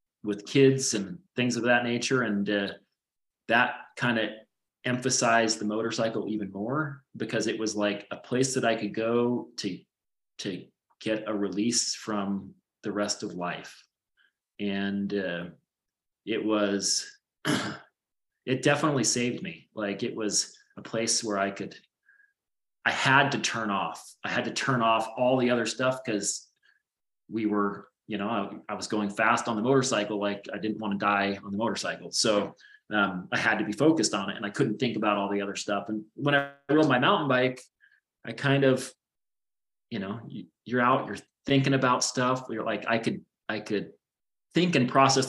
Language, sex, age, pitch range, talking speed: English, male, 30-49, 105-130 Hz, 180 wpm